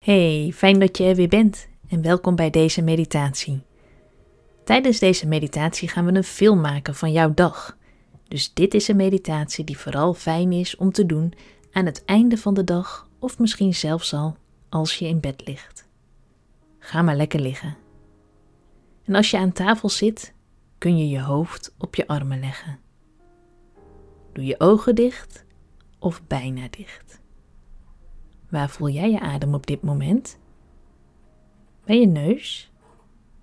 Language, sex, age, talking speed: Dutch, female, 20-39, 155 wpm